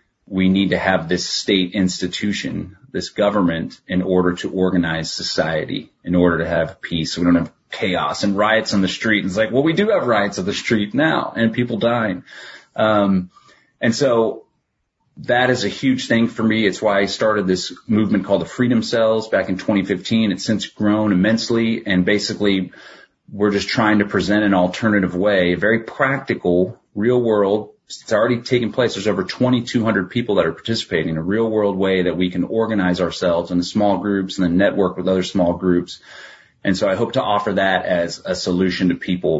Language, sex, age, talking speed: English, male, 30-49, 200 wpm